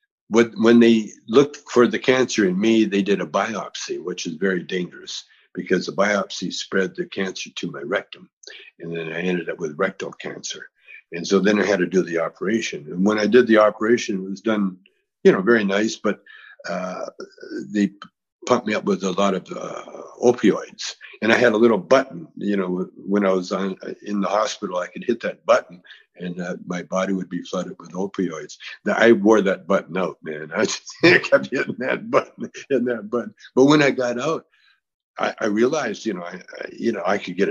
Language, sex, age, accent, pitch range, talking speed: English, male, 60-79, American, 95-135 Hz, 205 wpm